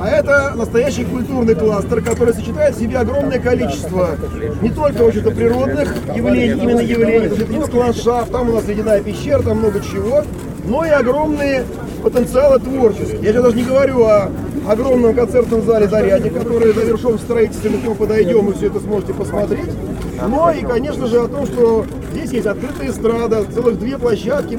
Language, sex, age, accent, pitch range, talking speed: Russian, male, 30-49, native, 220-265 Hz, 165 wpm